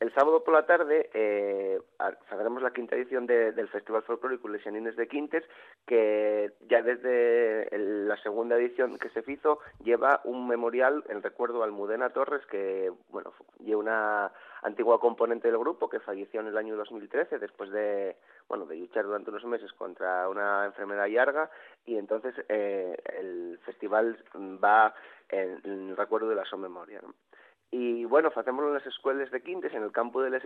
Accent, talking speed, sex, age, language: Spanish, 175 wpm, male, 30-49, Spanish